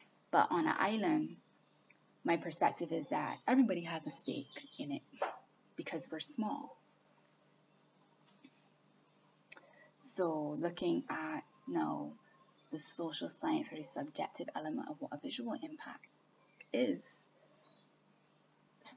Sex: female